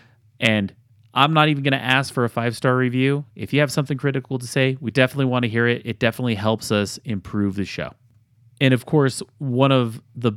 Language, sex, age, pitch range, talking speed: English, male, 30-49, 110-140 Hz, 215 wpm